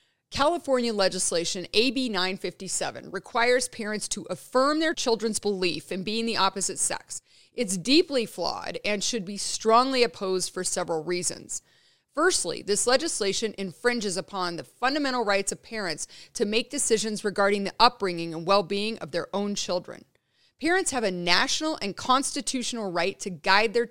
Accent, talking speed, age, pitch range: American, 150 wpm, 30-49, 185-245 Hz